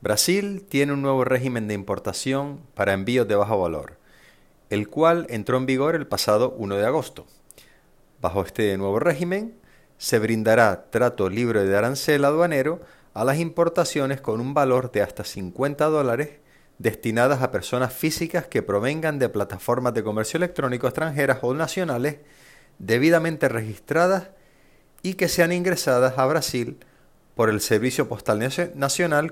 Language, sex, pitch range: Spanish, male, 110-150 Hz